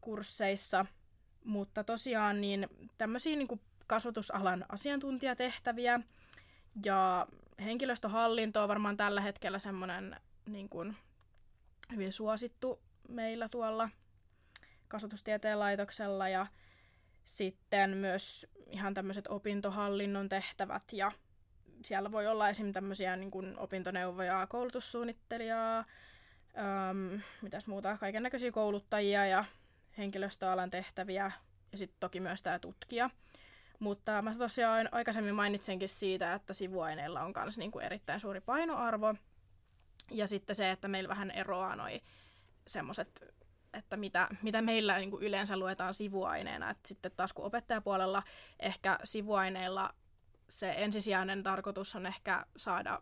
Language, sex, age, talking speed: Finnish, female, 20-39, 110 wpm